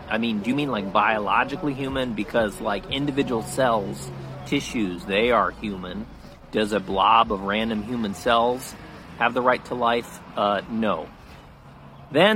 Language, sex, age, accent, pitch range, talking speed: English, male, 40-59, American, 110-155 Hz, 150 wpm